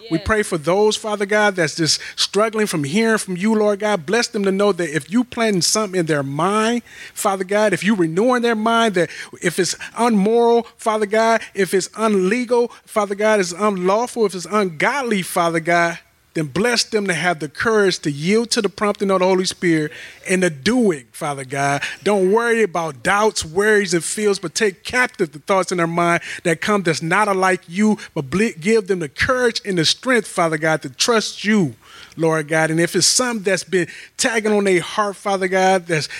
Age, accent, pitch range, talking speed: 30-49, American, 165-210 Hz, 205 wpm